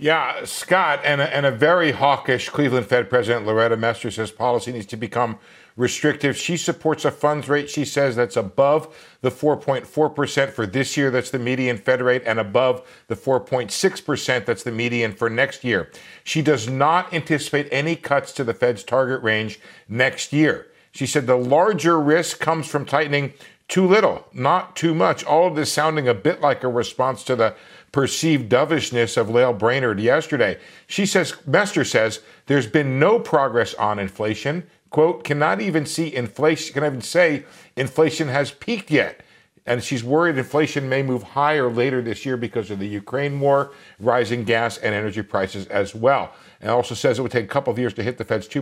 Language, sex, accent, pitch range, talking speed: English, male, American, 120-150 Hz, 185 wpm